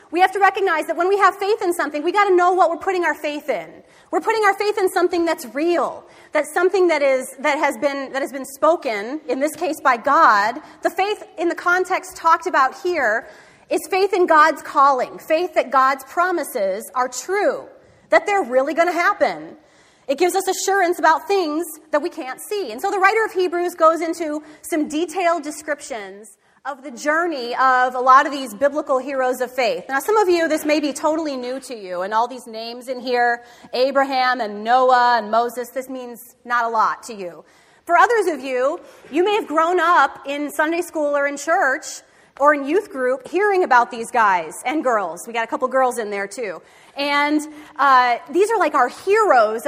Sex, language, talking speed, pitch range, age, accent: female, English, 210 wpm, 260-355 Hz, 30-49, American